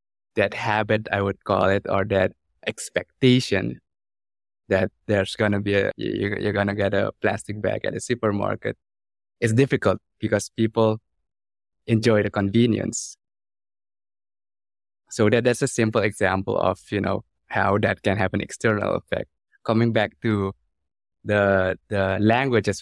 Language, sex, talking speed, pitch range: English, male, 145 wpm, 100-110 Hz